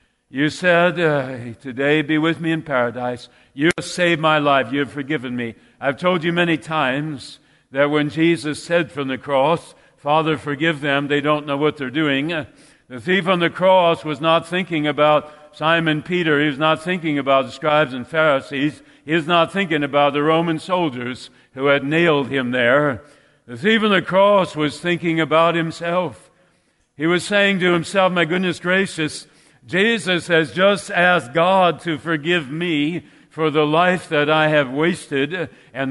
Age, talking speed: 50-69, 175 wpm